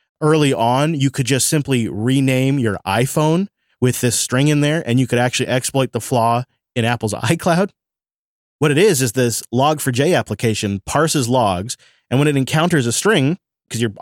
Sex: male